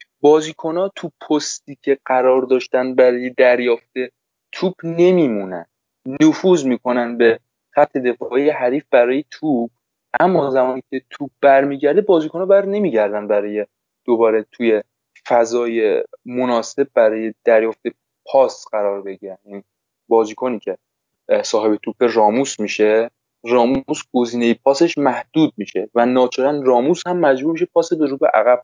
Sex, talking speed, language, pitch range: male, 125 wpm, Persian, 110-135 Hz